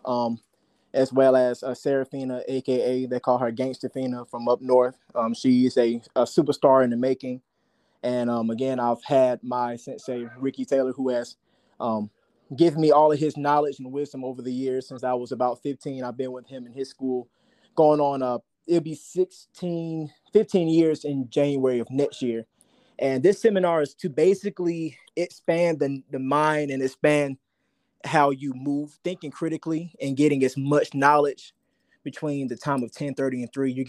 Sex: male